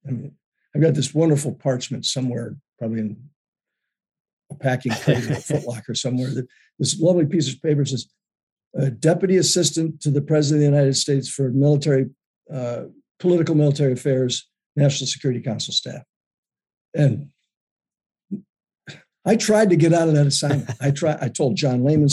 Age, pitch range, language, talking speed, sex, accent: 50-69, 130-150 Hz, English, 155 wpm, male, American